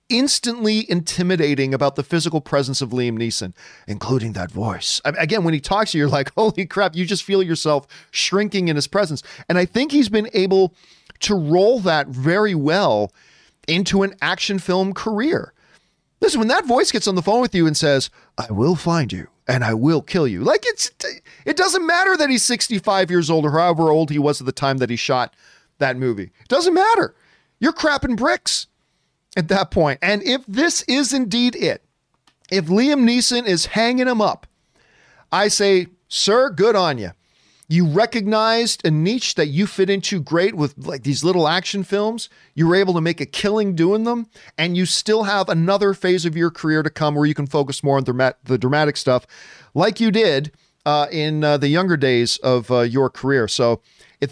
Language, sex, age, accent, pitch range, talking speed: English, male, 40-59, American, 145-215 Hz, 195 wpm